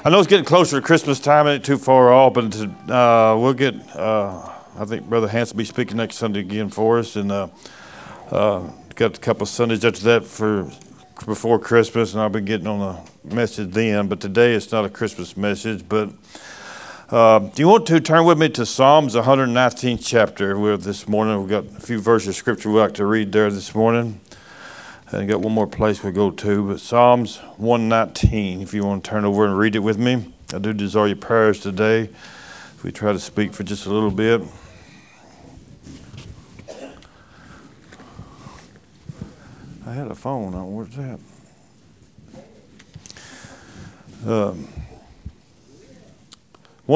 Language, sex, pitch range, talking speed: English, male, 100-120 Hz, 170 wpm